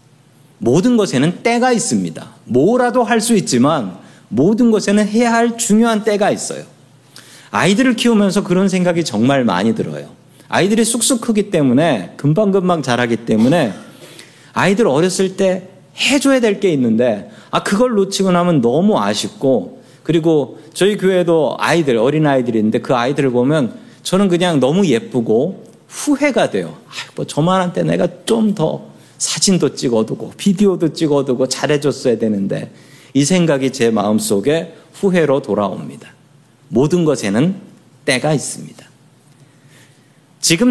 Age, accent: 40-59, native